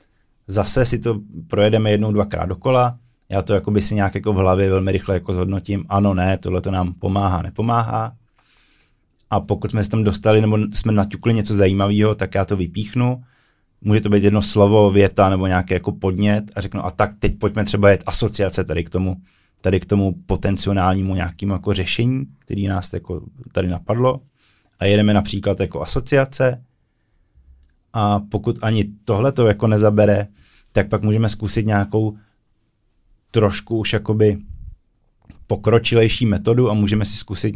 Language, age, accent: Czech, 20-39, native